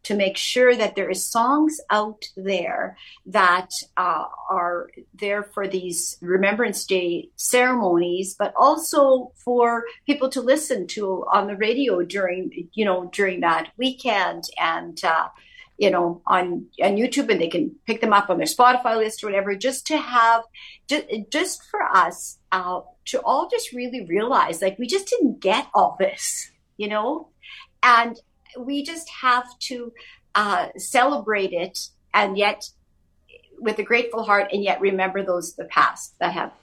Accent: American